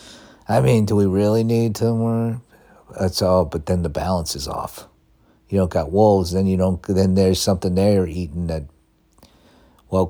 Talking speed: 185 wpm